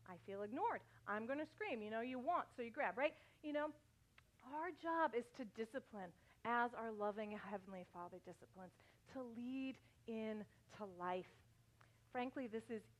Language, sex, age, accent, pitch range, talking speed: English, female, 40-59, American, 210-300 Hz, 165 wpm